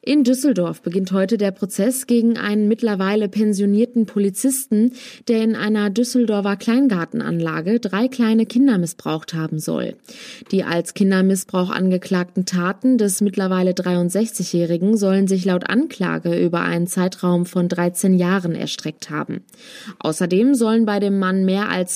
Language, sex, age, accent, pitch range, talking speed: German, female, 20-39, German, 190-230 Hz, 135 wpm